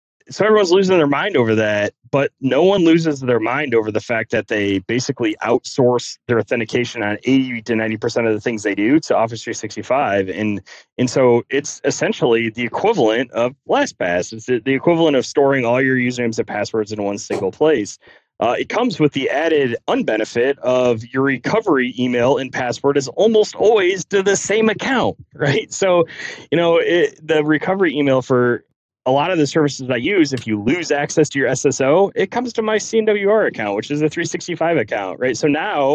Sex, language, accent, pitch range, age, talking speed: male, English, American, 120-170 Hz, 30-49, 190 wpm